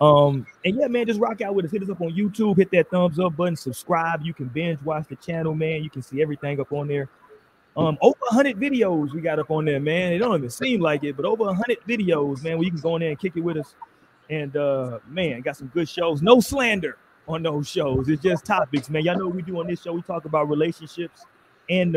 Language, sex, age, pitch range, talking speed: English, male, 30-49, 155-210 Hz, 255 wpm